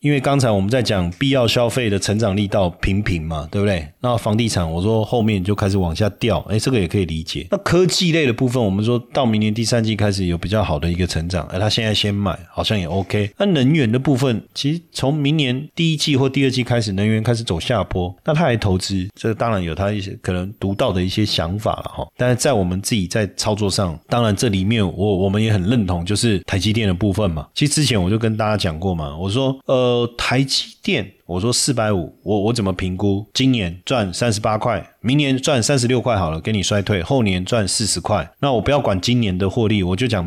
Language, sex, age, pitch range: Chinese, male, 30-49, 95-125 Hz